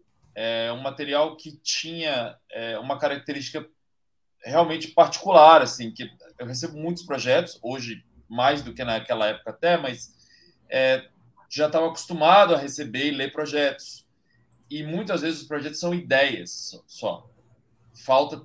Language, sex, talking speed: Portuguese, male, 135 wpm